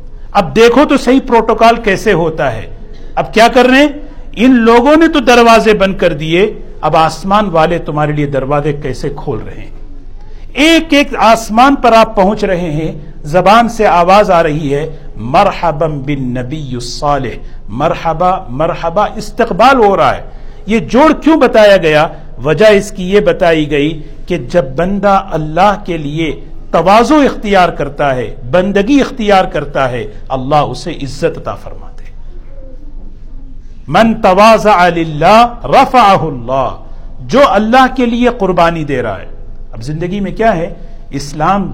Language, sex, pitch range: Urdu, male, 145-210 Hz